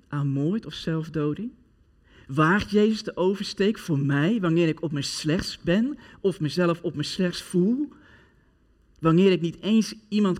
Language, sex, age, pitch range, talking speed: Dutch, male, 40-59, 130-175 Hz, 155 wpm